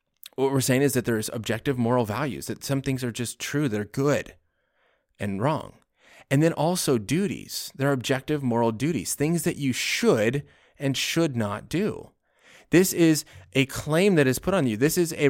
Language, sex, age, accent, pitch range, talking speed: English, male, 30-49, American, 110-145 Hz, 190 wpm